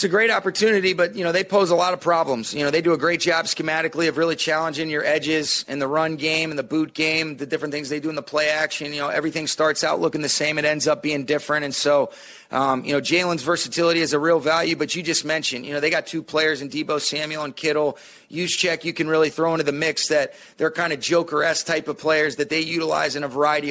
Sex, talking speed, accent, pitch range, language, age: male, 265 wpm, American, 155-190 Hz, English, 30-49